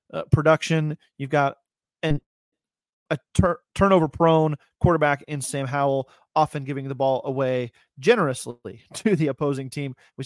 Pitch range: 130-165 Hz